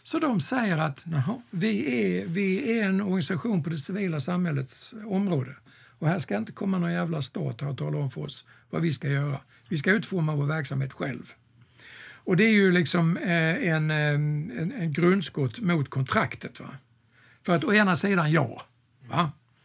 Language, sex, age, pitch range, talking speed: Swedish, male, 60-79, 135-180 Hz, 175 wpm